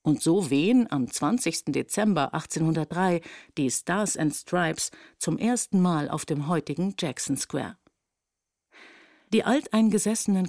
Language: German